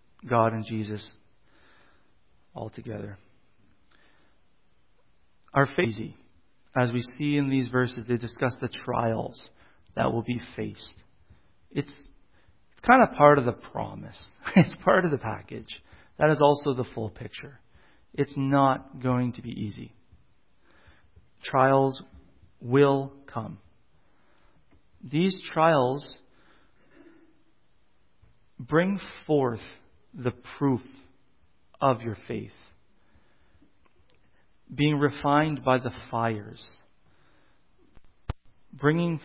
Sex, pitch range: male, 115-145 Hz